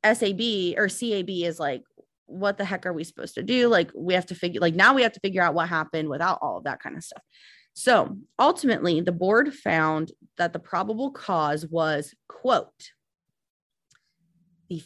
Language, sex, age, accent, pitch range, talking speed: English, female, 20-39, American, 170-225 Hz, 185 wpm